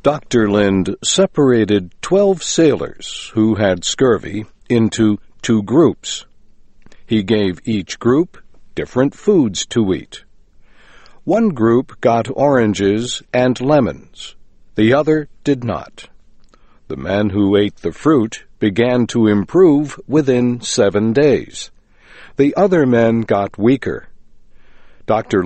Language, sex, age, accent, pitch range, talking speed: English, male, 60-79, American, 105-140 Hz, 110 wpm